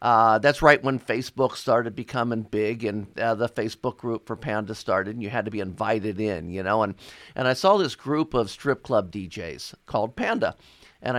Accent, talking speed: American, 205 wpm